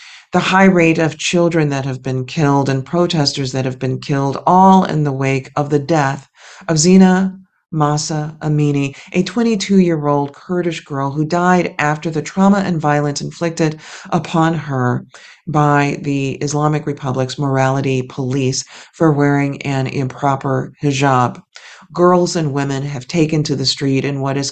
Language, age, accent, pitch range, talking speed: English, 40-59, American, 135-165 Hz, 155 wpm